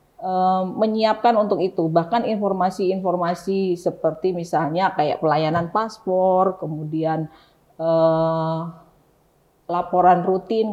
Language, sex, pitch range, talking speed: Indonesian, female, 175-200 Hz, 80 wpm